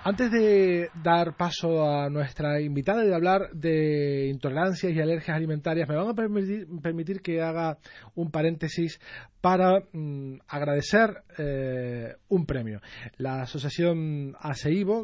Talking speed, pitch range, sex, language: 130 wpm, 145-175 Hz, male, Spanish